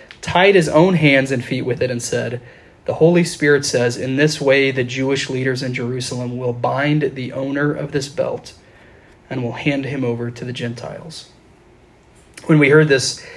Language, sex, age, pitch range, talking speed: English, male, 20-39, 125-150 Hz, 185 wpm